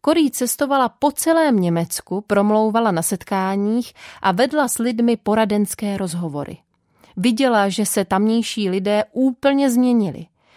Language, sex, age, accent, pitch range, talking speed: Czech, female, 30-49, native, 195-260 Hz, 120 wpm